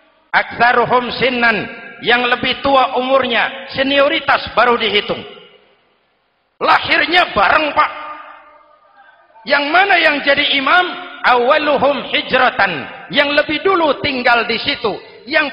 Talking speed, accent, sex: 100 wpm, native, male